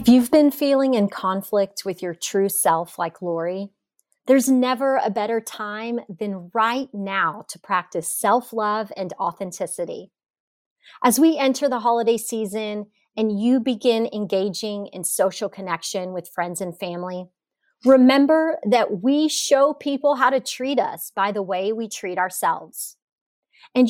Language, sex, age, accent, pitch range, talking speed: English, female, 30-49, American, 210-275 Hz, 145 wpm